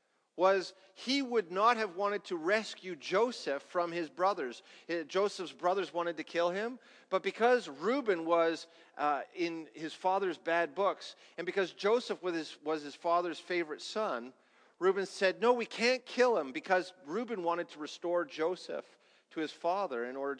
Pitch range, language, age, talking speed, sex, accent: 155-215 Hz, English, 40-59, 160 wpm, male, American